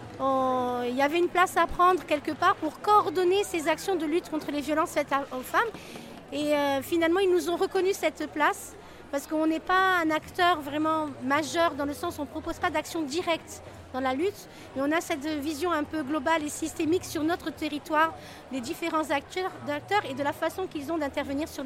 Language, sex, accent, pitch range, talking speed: French, female, French, 260-330 Hz, 210 wpm